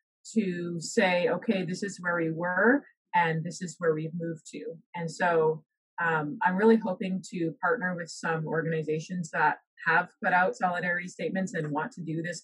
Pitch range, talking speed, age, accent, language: 160-200 Hz, 180 wpm, 30-49, American, English